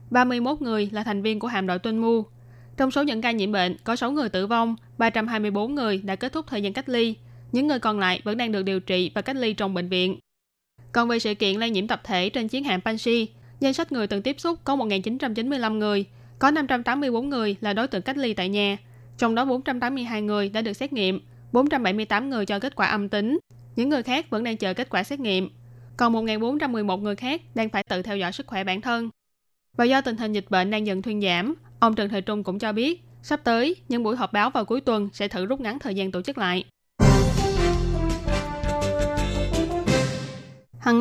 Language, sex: Vietnamese, female